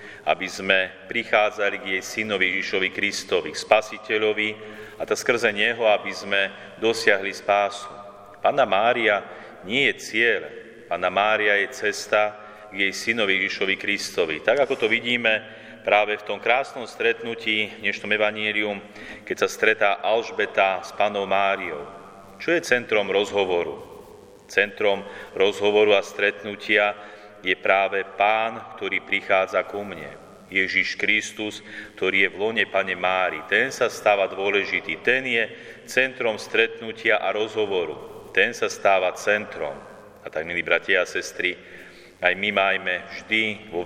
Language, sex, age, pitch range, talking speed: Slovak, male, 40-59, 95-110 Hz, 135 wpm